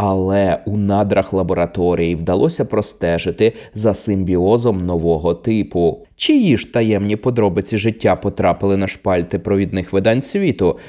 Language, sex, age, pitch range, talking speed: Ukrainian, male, 20-39, 100-145 Hz, 115 wpm